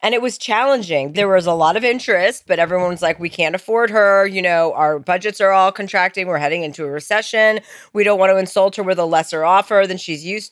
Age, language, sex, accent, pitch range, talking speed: 30-49, English, female, American, 175-225 Hz, 240 wpm